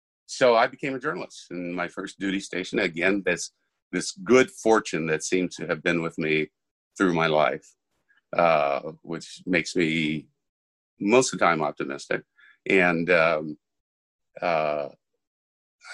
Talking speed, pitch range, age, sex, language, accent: 140 wpm, 80-95 Hz, 50-69, male, English, American